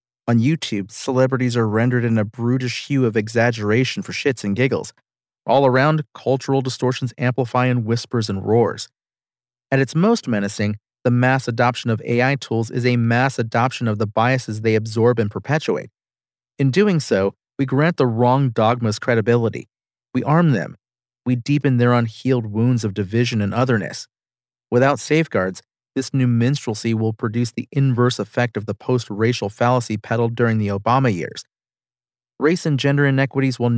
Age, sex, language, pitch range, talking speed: 40-59, male, English, 115-130 Hz, 160 wpm